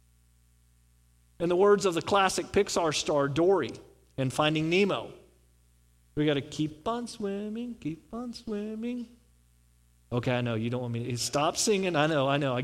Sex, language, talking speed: male, English, 170 wpm